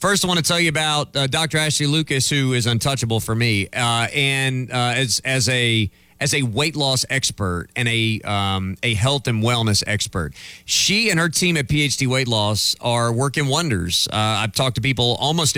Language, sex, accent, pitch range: English, male, American, 115-145 Hz